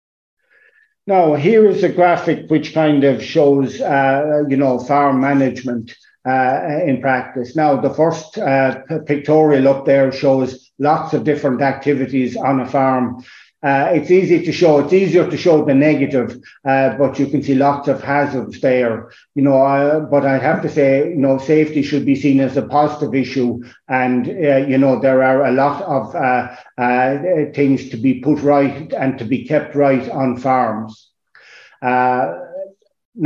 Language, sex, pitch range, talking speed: English, male, 130-150 Hz, 170 wpm